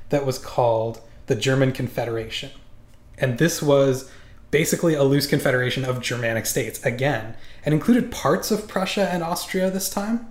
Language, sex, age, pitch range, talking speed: English, male, 20-39, 115-135 Hz, 150 wpm